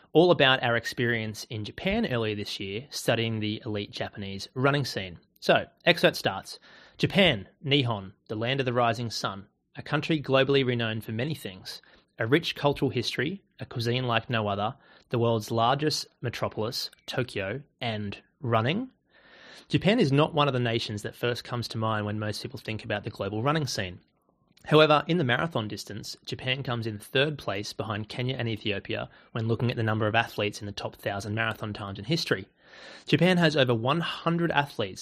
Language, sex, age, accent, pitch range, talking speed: English, male, 30-49, Australian, 105-140 Hz, 180 wpm